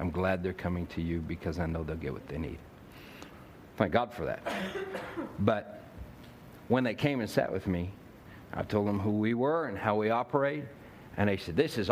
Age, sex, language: 60-79, male, English